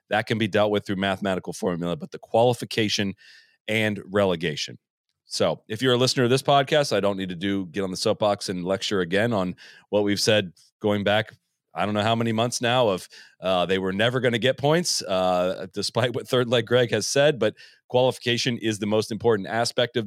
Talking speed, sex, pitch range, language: 210 wpm, male, 100-120 Hz, English